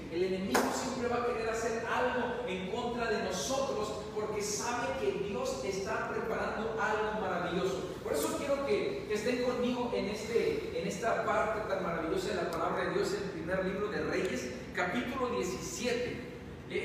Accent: Mexican